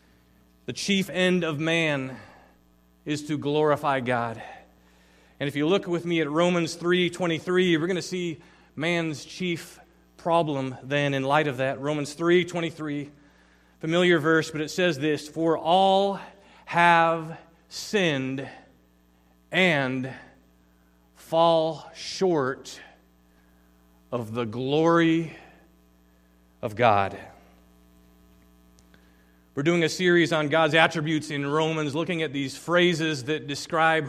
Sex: male